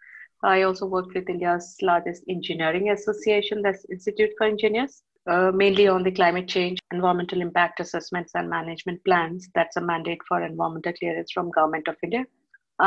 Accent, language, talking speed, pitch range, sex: Indian, English, 160 wpm, 175-205 Hz, female